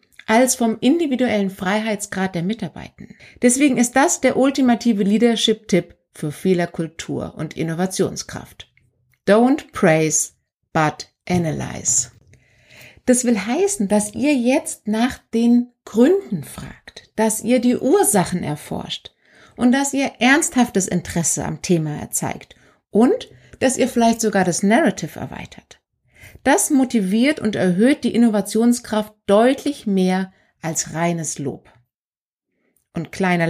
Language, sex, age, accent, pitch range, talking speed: German, female, 60-79, German, 180-260 Hz, 115 wpm